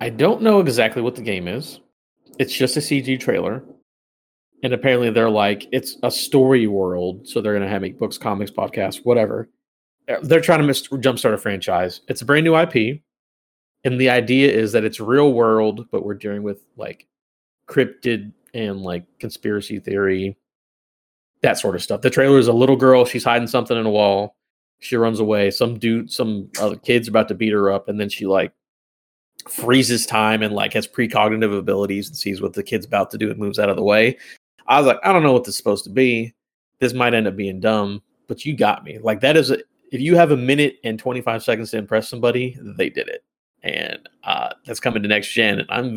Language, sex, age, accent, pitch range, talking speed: English, male, 30-49, American, 100-130 Hz, 215 wpm